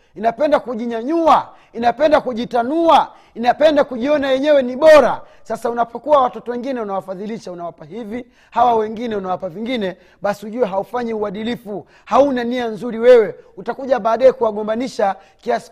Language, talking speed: Swahili, 120 wpm